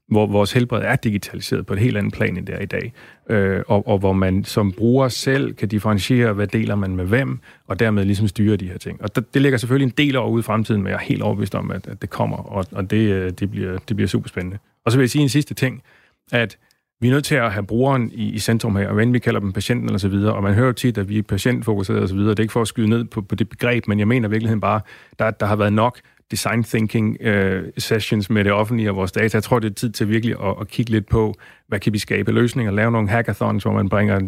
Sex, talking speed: male, 280 wpm